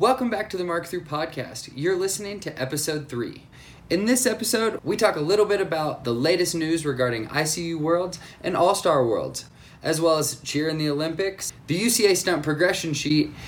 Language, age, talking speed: English, 20-39, 185 wpm